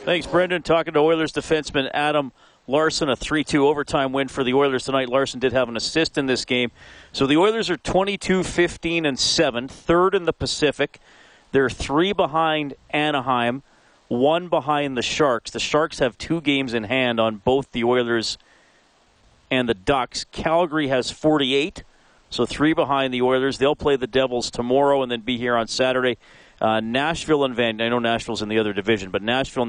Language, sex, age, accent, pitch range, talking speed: English, male, 40-59, American, 115-145 Hz, 170 wpm